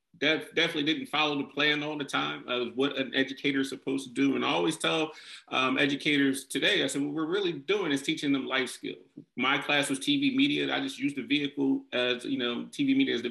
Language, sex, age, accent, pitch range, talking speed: English, male, 30-49, American, 120-150 Hz, 230 wpm